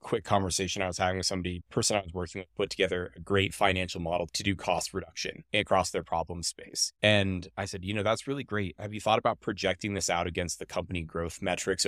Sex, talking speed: male, 235 wpm